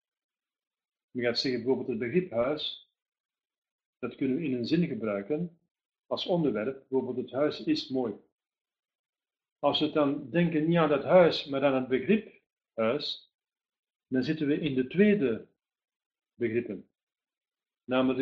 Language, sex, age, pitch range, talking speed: Dutch, male, 50-69, 125-165 Hz, 140 wpm